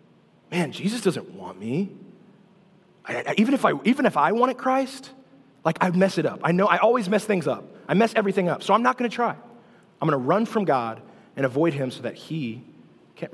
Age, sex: 30-49, male